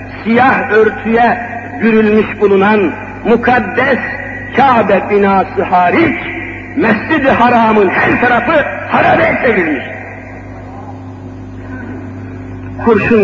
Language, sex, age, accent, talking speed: Turkish, male, 50-69, native, 70 wpm